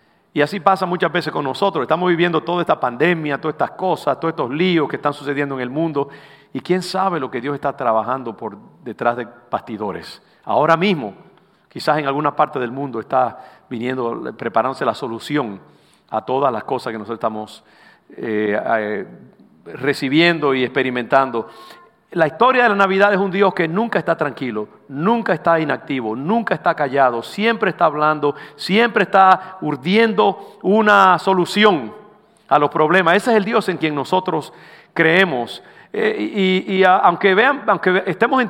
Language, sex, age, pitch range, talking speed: English, male, 50-69, 135-195 Hz, 165 wpm